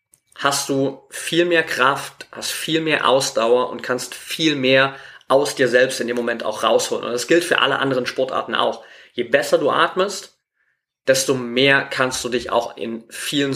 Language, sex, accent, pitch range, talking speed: German, male, German, 125-145 Hz, 180 wpm